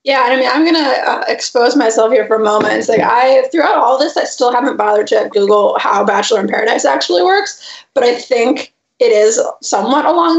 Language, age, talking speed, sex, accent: English, 20-39, 215 wpm, female, American